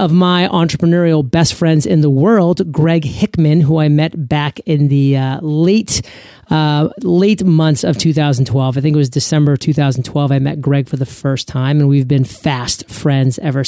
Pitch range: 135-160 Hz